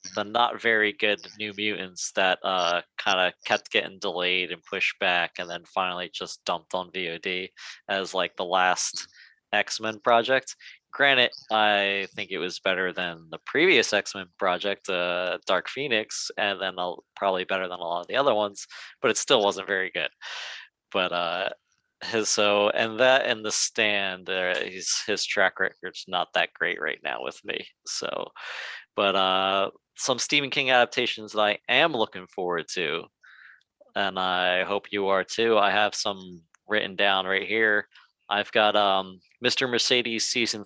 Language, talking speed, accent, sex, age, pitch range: English, 170 wpm, American, male, 20-39, 95-115 Hz